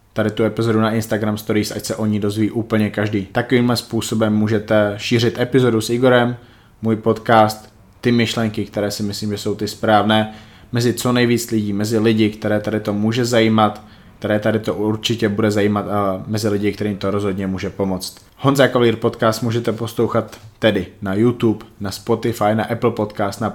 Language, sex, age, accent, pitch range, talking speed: Czech, male, 20-39, native, 105-115 Hz, 180 wpm